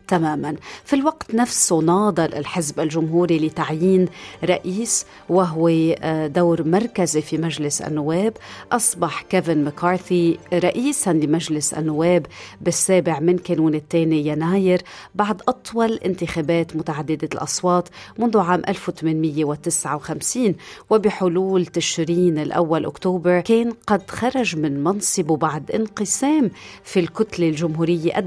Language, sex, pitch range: Arabic, female, 165-195 Hz